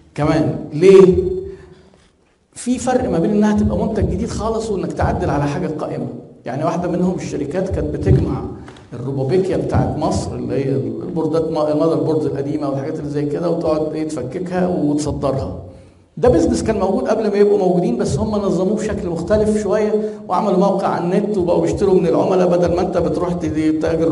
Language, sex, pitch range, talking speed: Arabic, male, 140-195 Hz, 160 wpm